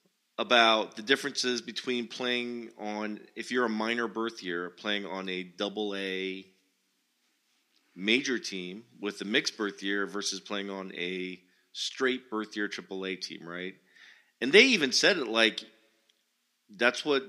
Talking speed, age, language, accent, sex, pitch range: 150 wpm, 40-59, English, American, male, 105-125 Hz